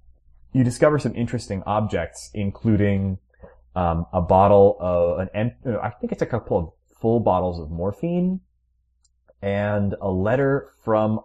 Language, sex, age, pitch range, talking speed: English, male, 30-49, 80-110 Hz, 135 wpm